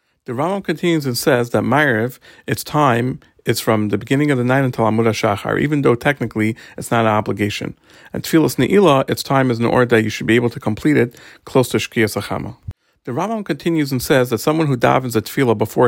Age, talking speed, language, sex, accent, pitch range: 40-59, 220 wpm, English, male, American, 110-135 Hz